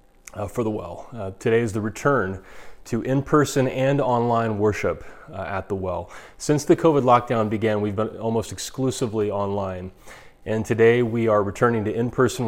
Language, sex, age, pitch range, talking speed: English, male, 30-49, 105-130 Hz, 170 wpm